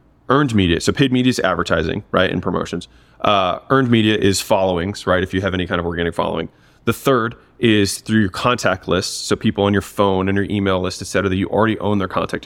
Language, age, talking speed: English, 30-49, 230 wpm